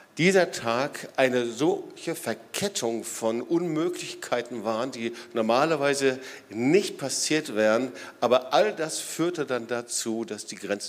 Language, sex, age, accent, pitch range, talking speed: German, male, 50-69, German, 115-140 Hz, 120 wpm